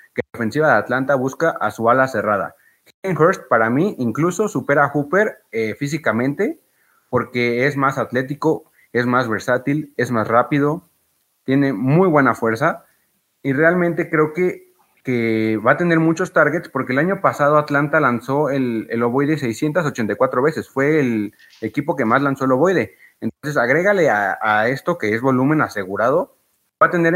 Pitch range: 125-160 Hz